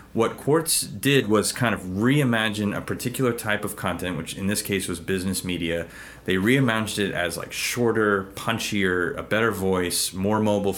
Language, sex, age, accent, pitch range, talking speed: English, male, 30-49, American, 90-110 Hz, 175 wpm